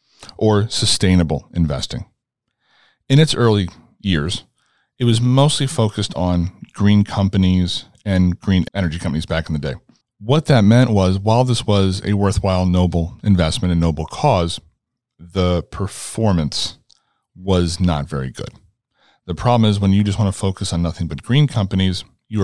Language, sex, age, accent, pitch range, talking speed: English, male, 40-59, American, 85-105 Hz, 150 wpm